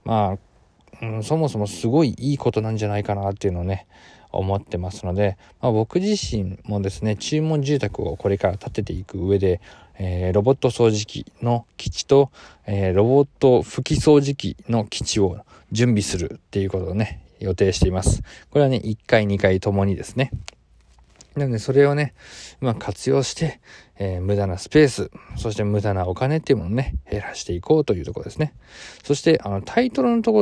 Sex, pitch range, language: male, 95-140 Hz, Japanese